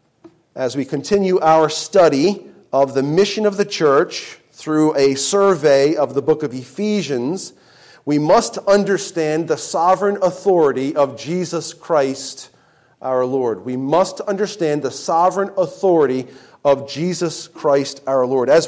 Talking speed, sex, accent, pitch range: 135 wpm, male, American, 150-205 Hz